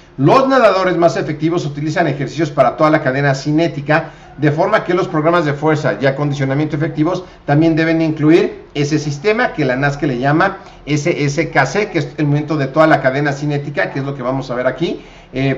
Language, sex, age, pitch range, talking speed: Spanish, male, 50-69, 145-170 Hz, 195 wpm